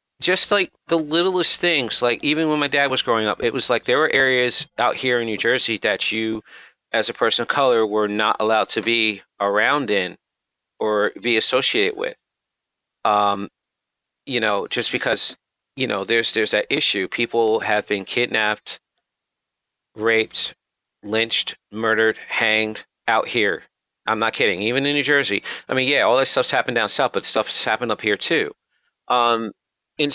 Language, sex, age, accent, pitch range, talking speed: English, male, 40-59, American, 105-130 Hz, 175 wpm